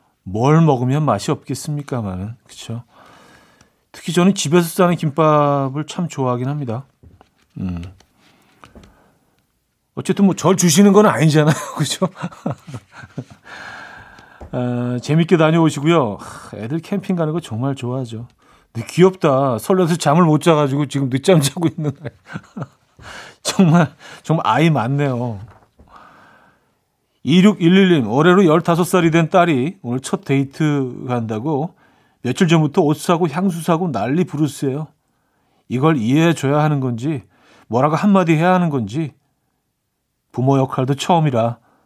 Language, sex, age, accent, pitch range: Korean, male, 40-59, native, 125-170 Hz